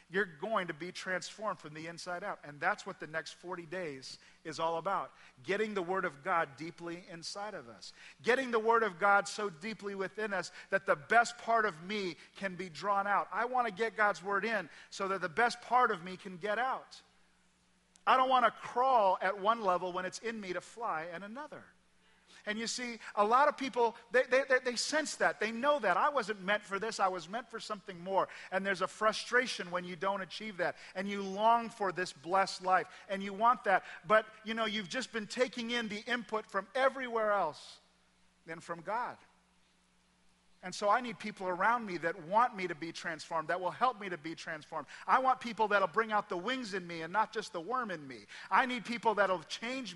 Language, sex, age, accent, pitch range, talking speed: English, male, 40-59, American, 185-235 Hz, 225 wpm